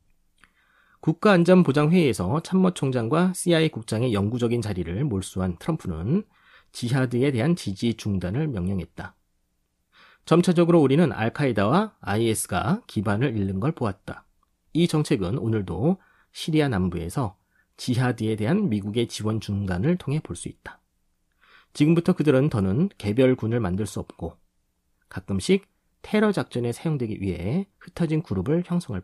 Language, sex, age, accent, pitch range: Korean, male, 30-49, native, 100-165 Hz